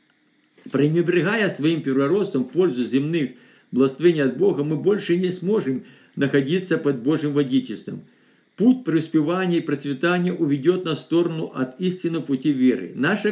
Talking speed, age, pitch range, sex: 135 wpm, 50-69, 135-175 Hz, male